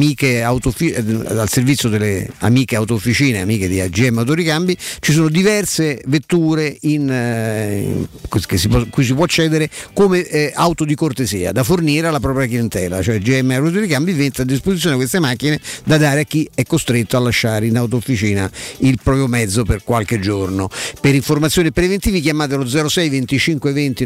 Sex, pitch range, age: male, 120-160 Hz, 50-69